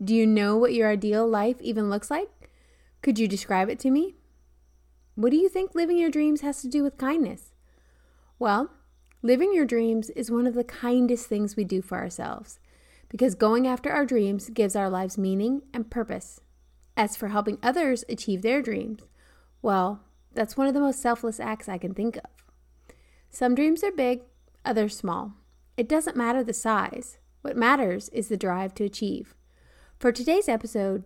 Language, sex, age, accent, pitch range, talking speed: English, female, 30-49, American, 205-260 Hz, 180 wpm